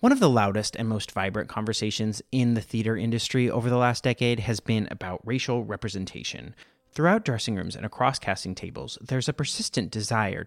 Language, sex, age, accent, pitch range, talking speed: English, male, 30-49, American, 100-135 Hz, 185 wpm